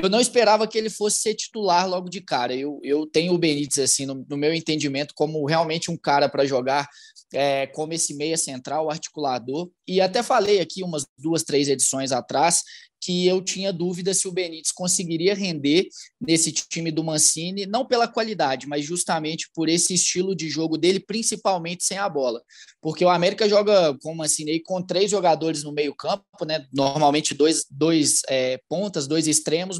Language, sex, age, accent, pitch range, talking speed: Portuguese, male, 20-39, Brazilian, 155-195 Hz, 180 wpm